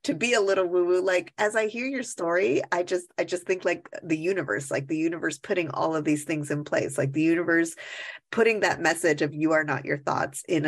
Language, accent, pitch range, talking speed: English, American, 155-195 Hz, 235 wpm